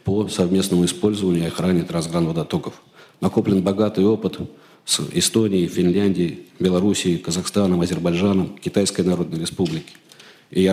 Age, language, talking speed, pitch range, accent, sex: 40-59, Russian, 110 wpm, 90-100 Hz, native, male